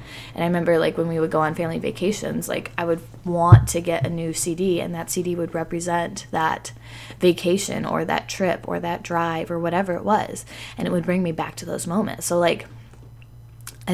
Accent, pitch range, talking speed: American, 120-175 Hz, 210 wpm